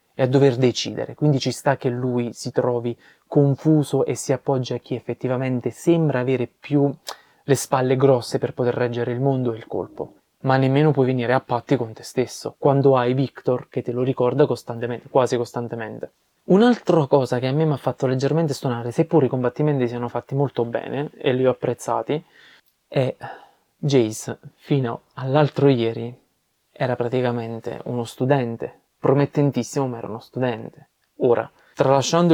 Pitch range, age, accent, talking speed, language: 120-140 Hz, 20-39, native, 165 wpm, Italian